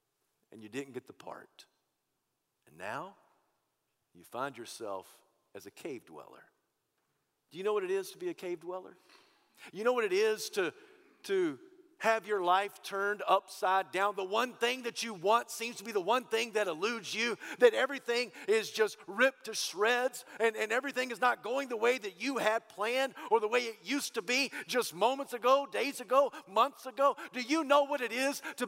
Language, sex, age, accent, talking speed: English, male, 50-69, American, 195 wpm